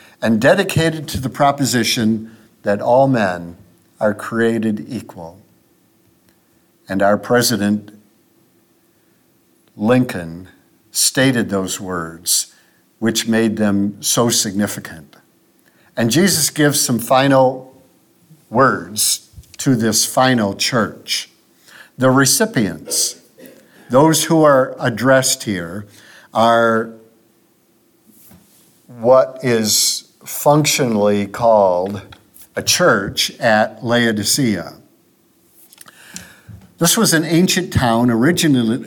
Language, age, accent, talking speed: English, 50-69, American, 85 wpm